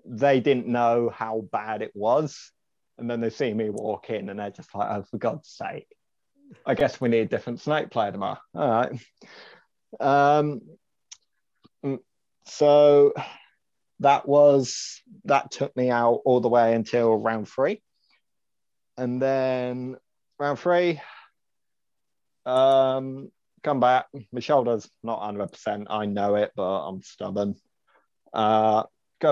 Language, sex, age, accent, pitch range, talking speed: English, male, 30-49, British, 110-140 Hz, 135 wpm